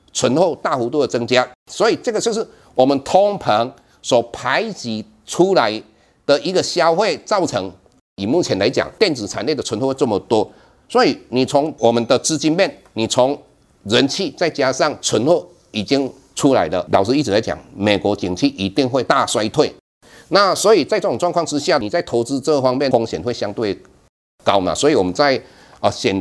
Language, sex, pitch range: Chinese, male, 100-140 Hz